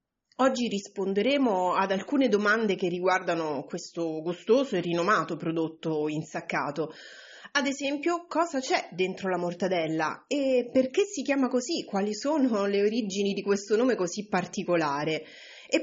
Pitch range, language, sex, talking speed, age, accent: 175-245 Hz, Italian, female, 135 wpm, 30-49, native